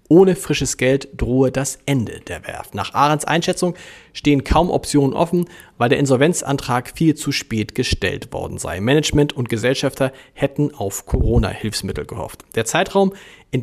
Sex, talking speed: male, 150 wpm